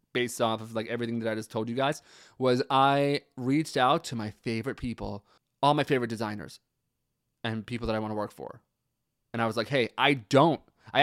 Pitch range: 115-150 Hz